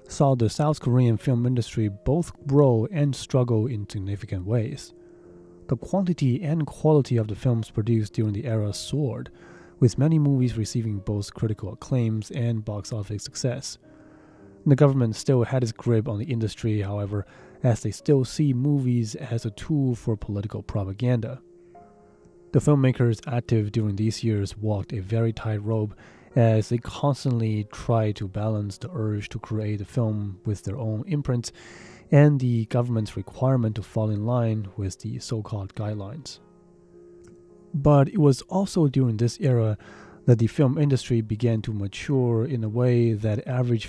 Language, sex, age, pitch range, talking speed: English, male, 20-39, 105-130 Hz, 155 wpm